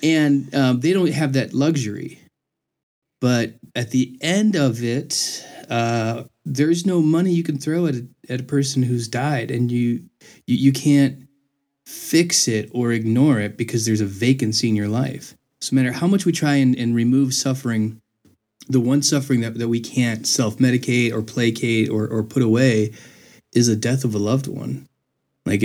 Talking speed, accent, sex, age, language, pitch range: 180 wpm, American, male, 20-39, English, 110-135 Hz